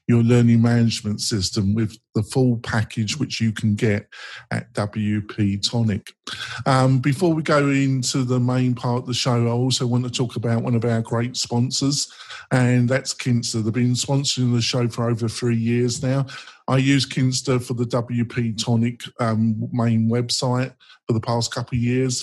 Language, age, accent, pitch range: English, 50-69, British, 115-130 Hz